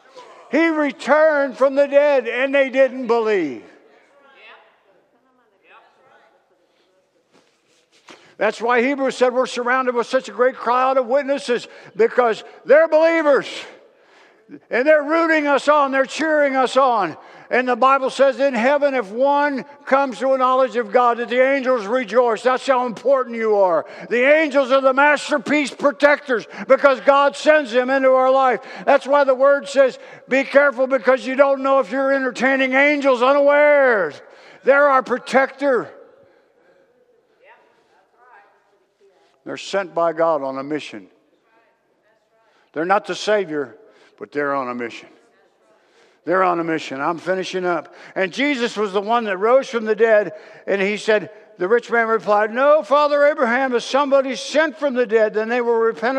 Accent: American